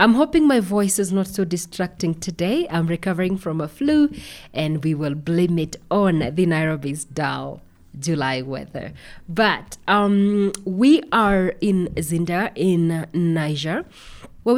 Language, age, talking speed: English, 20-39, 140 wpm